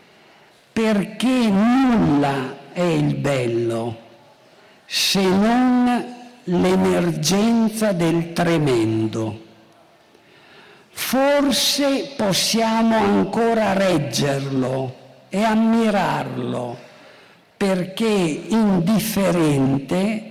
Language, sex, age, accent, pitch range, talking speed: Italian, male, 60-79, native, 175-215 Hz, 55 wpm